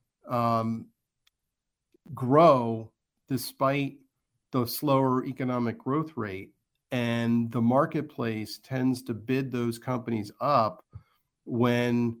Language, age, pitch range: English, 40-59, 115-135 Hz